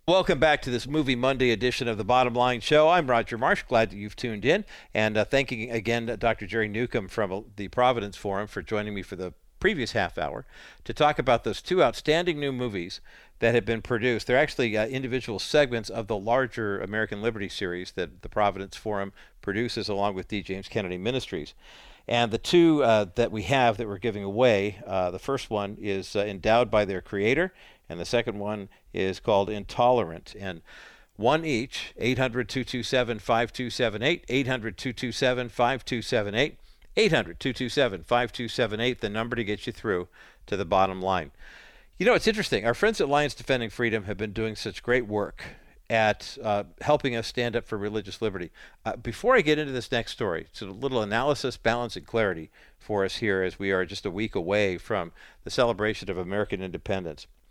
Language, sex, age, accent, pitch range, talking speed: English, male, 50-69, American, 100-125 Hz, 185 wpm